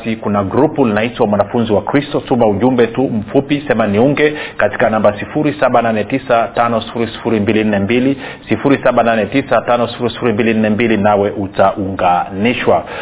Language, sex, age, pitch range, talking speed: Swahili, male, 40-59, 110-135 Hz, 85 wpm